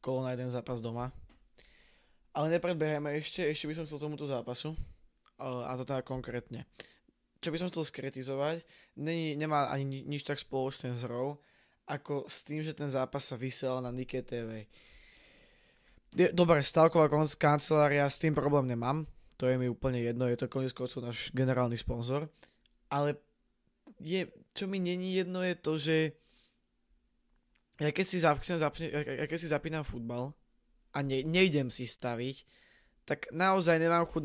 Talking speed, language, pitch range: 150 wpm, Slovak, 130-155 Hz